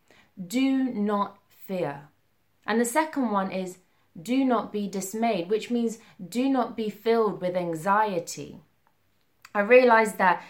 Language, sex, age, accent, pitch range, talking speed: English, female, 20-39, British, 190-250 Hz, 130 wpm